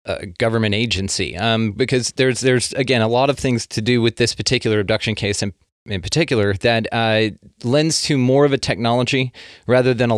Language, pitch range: English, 100-125 Hz